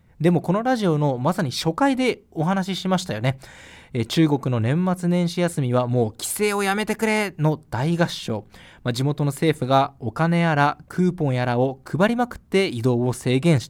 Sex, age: male, 20-39